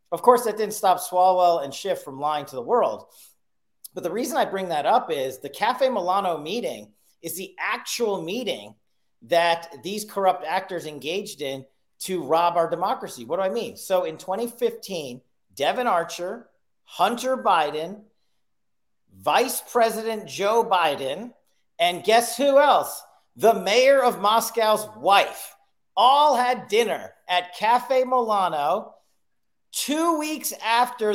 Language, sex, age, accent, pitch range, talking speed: English, male, 40-59, American, 180-225 Hz, 140 wpm